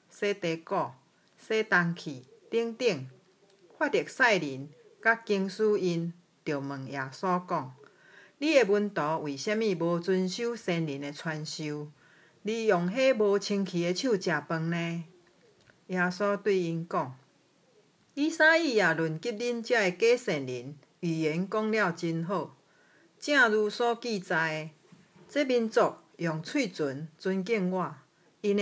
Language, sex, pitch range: Chinese, female, 165-220 Hz